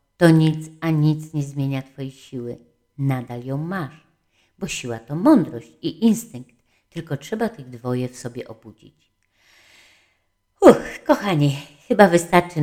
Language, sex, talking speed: Polish, female, 135 wpm